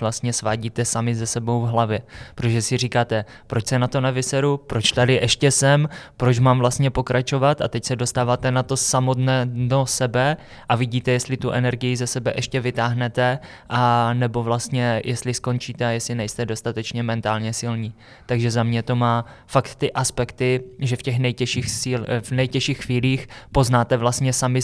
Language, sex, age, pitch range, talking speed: Czech, male, 20-39, 110-125 Hz, 175 wpm